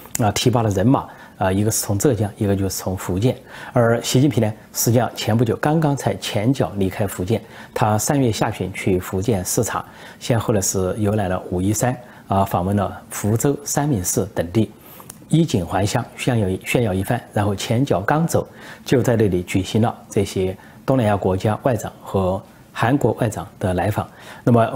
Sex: male